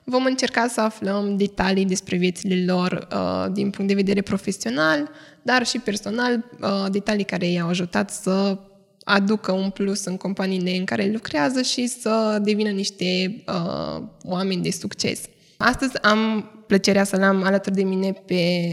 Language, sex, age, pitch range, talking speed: Romanian, female, 10-29, 180-210 Hz, 155 wpm